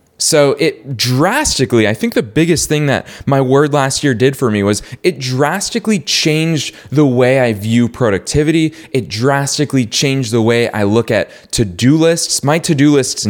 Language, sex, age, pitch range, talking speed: English, male, 20-39, 110-160 Hz, 170 wpm